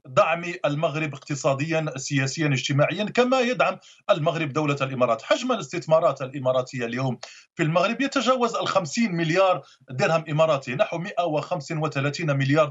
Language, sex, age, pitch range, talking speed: English, male, 40-59, 145-180 Hz, 115 wpm